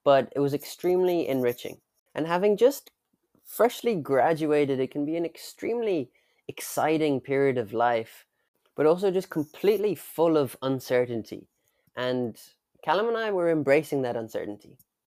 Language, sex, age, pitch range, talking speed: English, male, 20-39, 125-165 Hz, 135 wpm